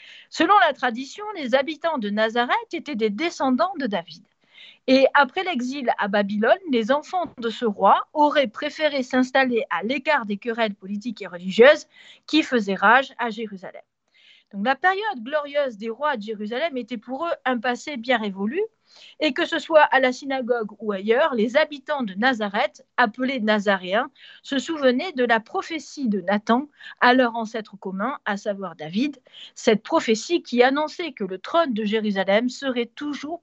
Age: 50-69